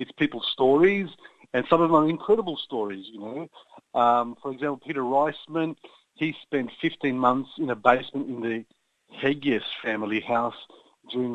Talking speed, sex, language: 160 wpm, male, Hungarian